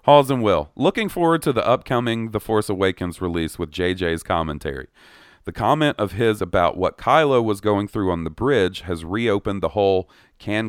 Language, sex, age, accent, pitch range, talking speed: English, male, 40-59, American, 90-120 Hz, 185 wpm